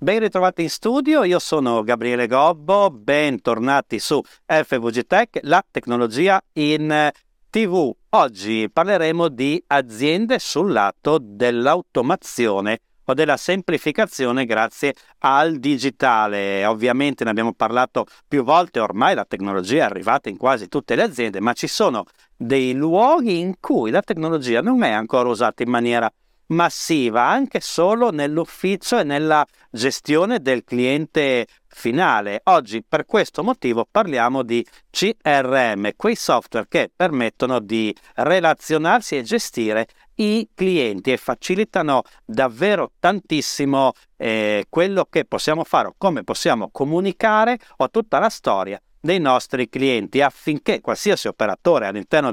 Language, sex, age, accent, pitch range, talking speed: Italian, male, 50-69, native, 120-175 Hz, 125 wpm